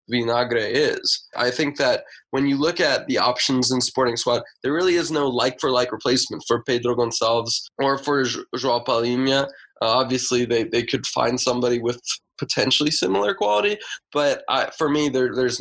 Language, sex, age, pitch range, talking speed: English, male, 20-39, 120-145 Hz, 175 wpm